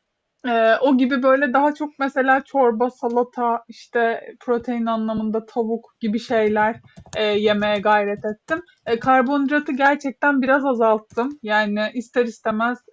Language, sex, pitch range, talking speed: Turkish, male, 220-275 Hz, 125 wpm